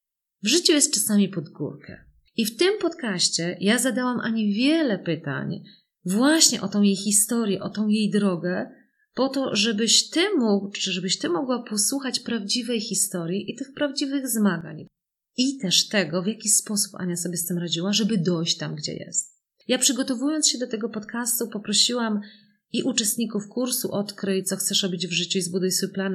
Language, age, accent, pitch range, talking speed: Polish, 30-49, native, 185-240 Hz, 175 wpm